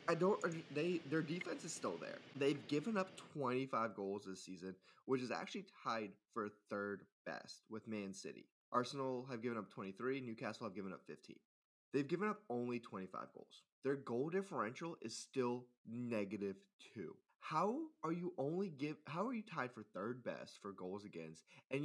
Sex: male